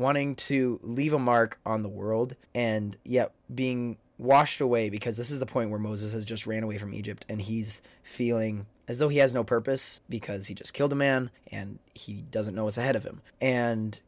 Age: 20-39